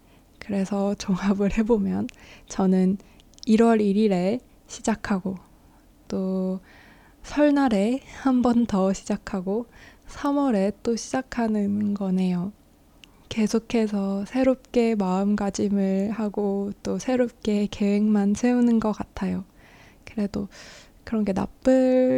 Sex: female